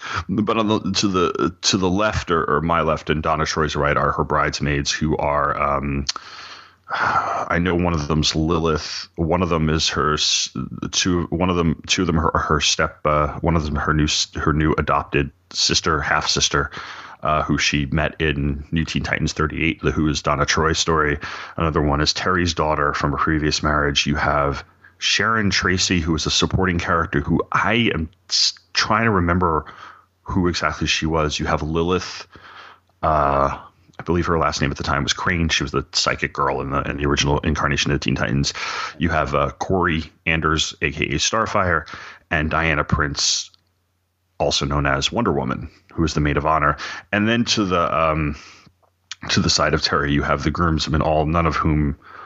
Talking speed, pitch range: 190 wpm, 75-85 Hz